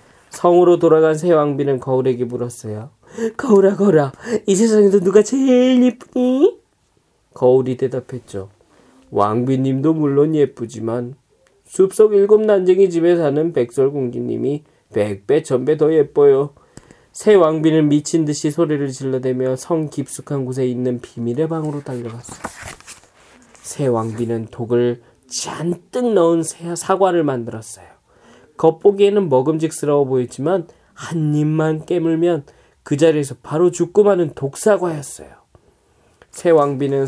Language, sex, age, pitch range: Korean, male, 20-39, 130-170 Hz